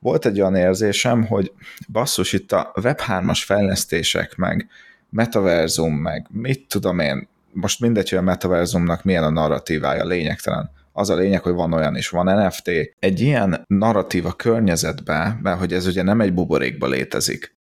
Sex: male